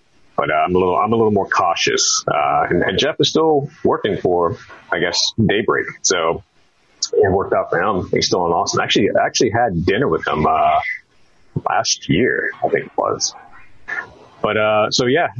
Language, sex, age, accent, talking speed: English, male, 30-49, American, 190 wpm